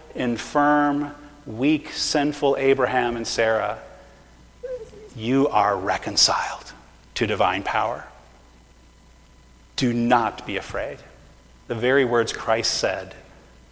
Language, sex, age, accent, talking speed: English, male, 40-59, American, 90 wpm